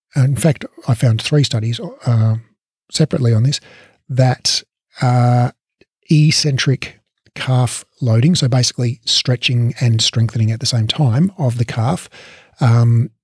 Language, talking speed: English, 125 wpm